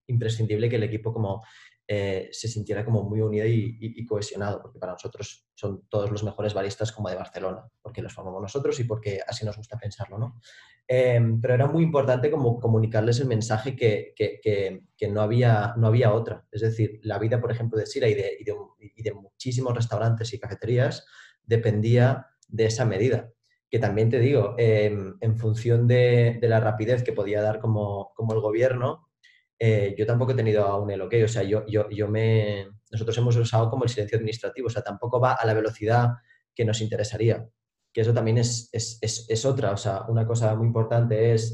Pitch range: 105-120 Hz